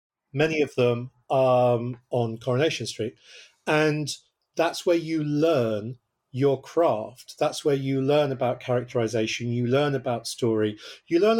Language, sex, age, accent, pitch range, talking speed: English, male, 40-59, British, 125-155 Hz, 140 wpm